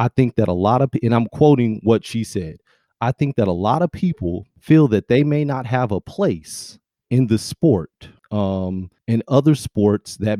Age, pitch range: 30-49, 100-130 Hz